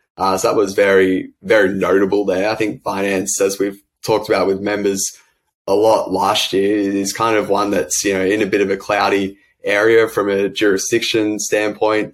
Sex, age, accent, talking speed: male, 20-39, Australian, 195 wpm